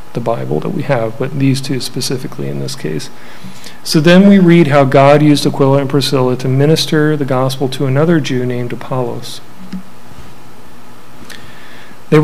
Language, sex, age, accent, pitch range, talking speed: English, male, 40-59, American, 120-145 Hz, 155 wpm